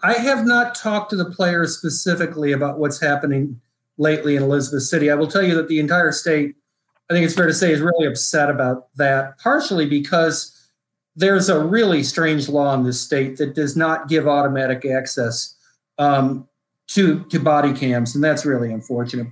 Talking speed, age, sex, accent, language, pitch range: 185 wpm, 40-59, male, American, English, 145-185 Hz